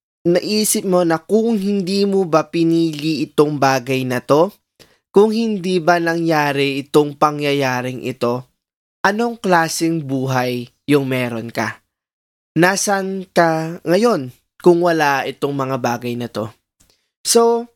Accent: native